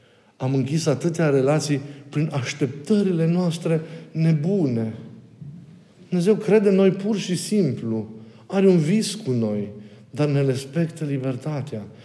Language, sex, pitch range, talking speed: Romanian, male, 125-165 Hz, 120 wpm